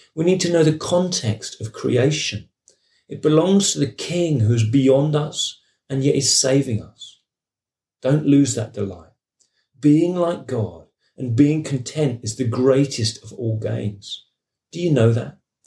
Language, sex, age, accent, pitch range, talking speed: English, male, 40-59, British, 110-145 Hz, 155 wpm